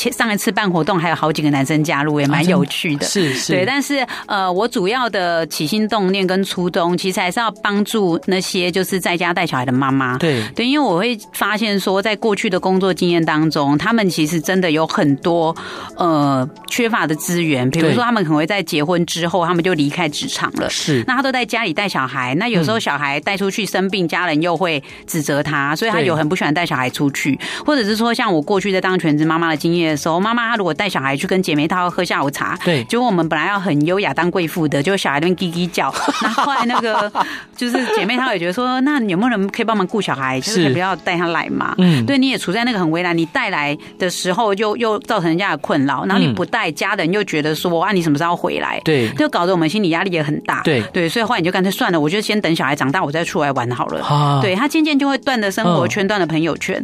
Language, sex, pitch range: Chinese, female, 155-210 Hz